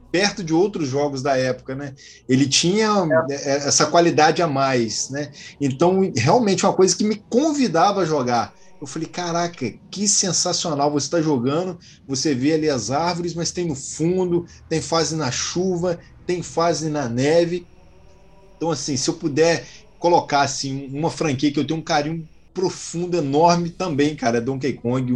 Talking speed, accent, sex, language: 165 wpm, Brazilian, male, Portuguese